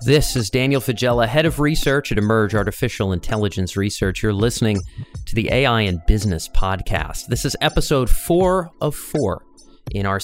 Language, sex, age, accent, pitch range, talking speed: English, male, 30-49, American, 100-125 Hz, 165 wpm